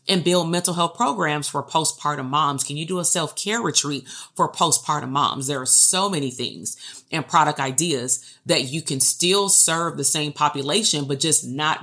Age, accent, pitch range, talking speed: 30-49, American, 140-180 Hz, 185 wpm